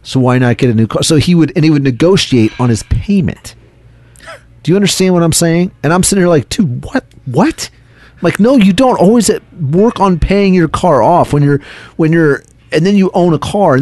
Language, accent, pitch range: English, American, 115-170 Hz